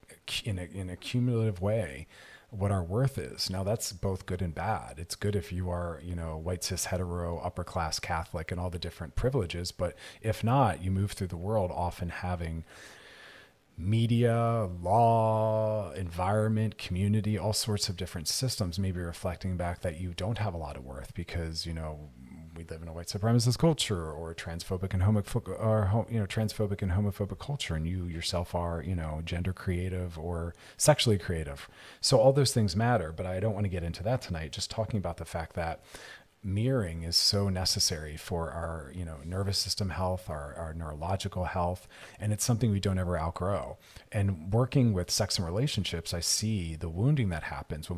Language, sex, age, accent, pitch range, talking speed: English, male, 40-59, American, 85-105 Hz, 190 wpm